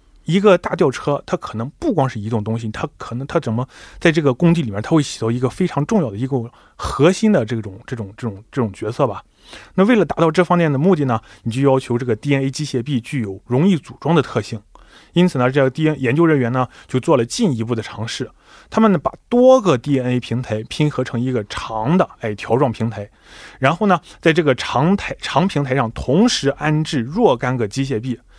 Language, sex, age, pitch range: Korean, male, 20-39, 120-170 Hz